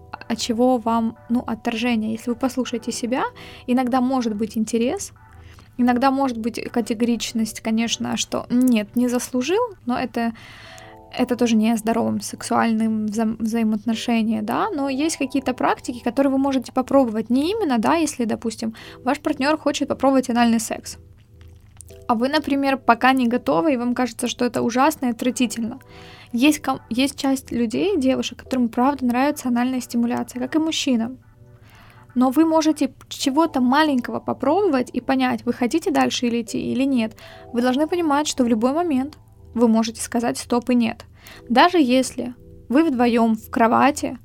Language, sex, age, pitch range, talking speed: Ukrainian, female, 20-39, 230-270 Hz, 150 wpm